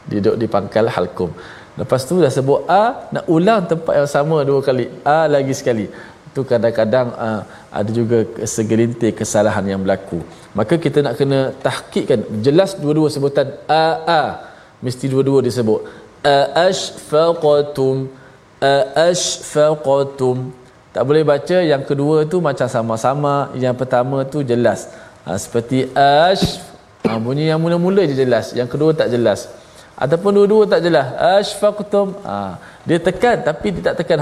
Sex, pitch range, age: male, 120-155 Hz, 20-39